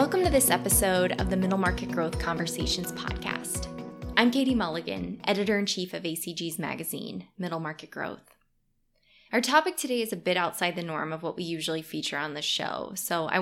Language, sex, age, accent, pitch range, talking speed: English, female, 20-39, American, 155-190 Hz, 180 wpm